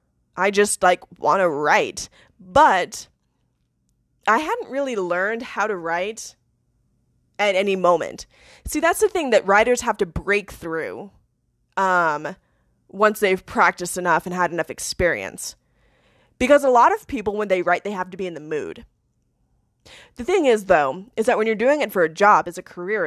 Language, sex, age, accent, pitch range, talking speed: English, female, 20-39, American, 180-240 Hz, 175 wpm